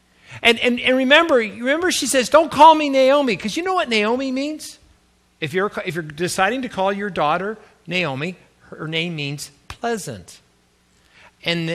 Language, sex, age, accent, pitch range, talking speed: English, male, 50-69, American, 160-255 Hz, 165 wpm